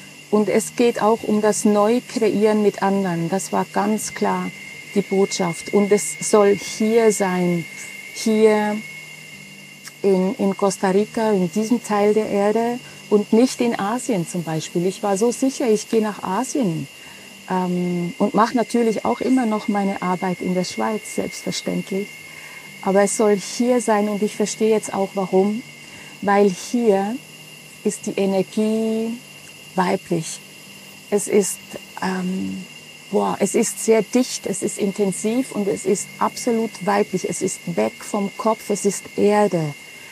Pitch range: 185-215 Hz